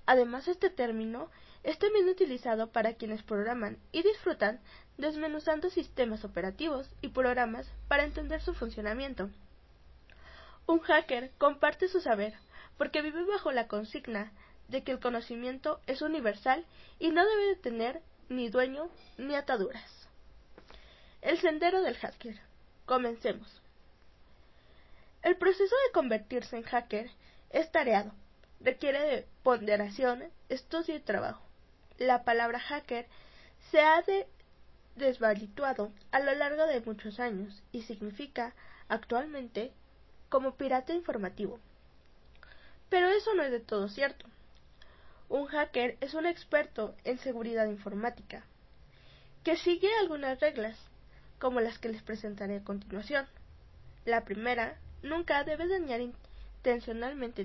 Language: Spanish